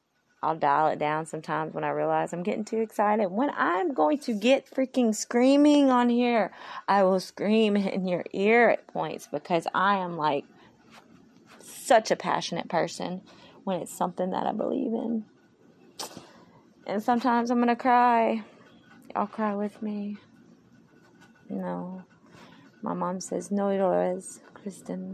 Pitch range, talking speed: 175-240 Hz, 145 wpm